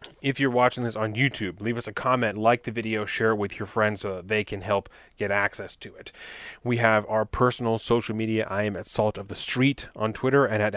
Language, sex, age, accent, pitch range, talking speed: English, male, 30-49, American, 105-120 Hz, 245 wpm